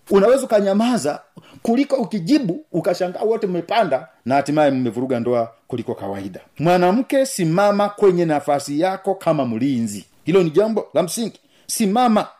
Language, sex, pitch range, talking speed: Swahili, male, 170-235 Hz, 125 wpm